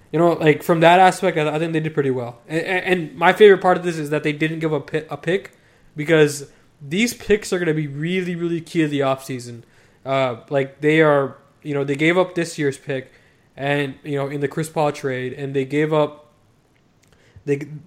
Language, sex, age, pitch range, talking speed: English, male, 20-39, 135-160 Hz, 230 wpm